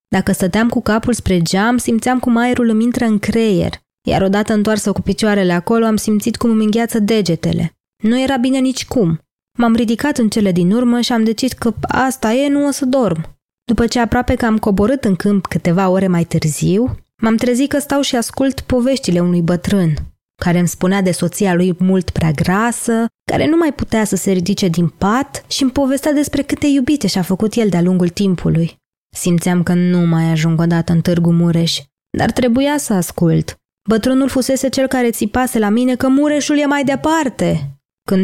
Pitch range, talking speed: 180-250 Hz, 190 wpm